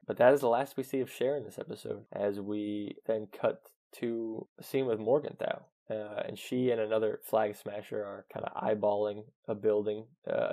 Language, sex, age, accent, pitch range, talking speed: English, male, 20-39, American, 105-120 Hz, 200 wpm